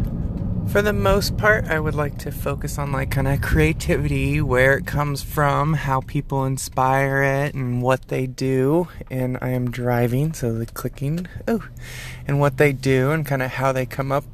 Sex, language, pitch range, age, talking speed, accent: male, English, 120-145 Hz, 20-39, 190 wpm, American